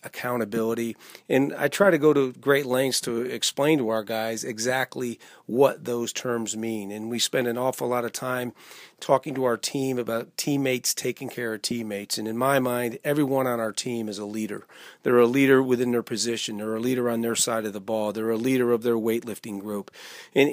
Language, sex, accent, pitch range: English, male, American, 115-130 Hz